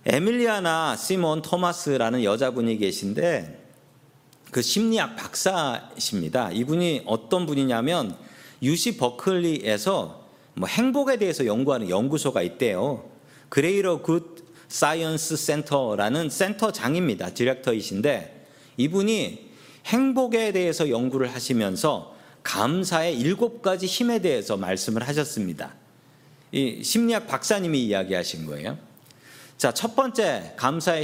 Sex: male